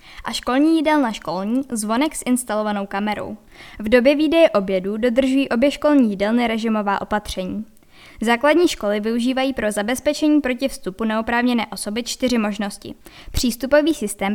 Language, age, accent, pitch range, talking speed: Czech, 10-29, native, 210-275 Hz, 130 wpm